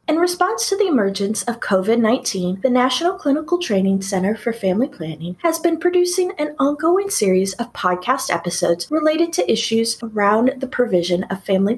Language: English